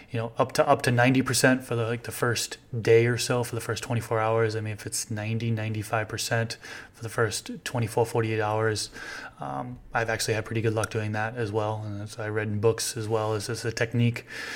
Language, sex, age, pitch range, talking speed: English, male, 20-39, 115-125 Hz, 225 wpm